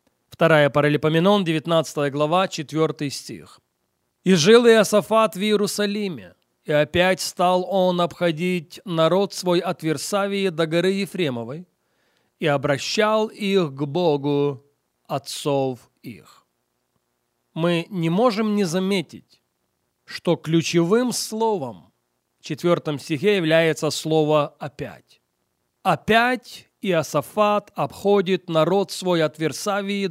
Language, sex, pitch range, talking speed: English, male, 150-200 Hz, 100 wpm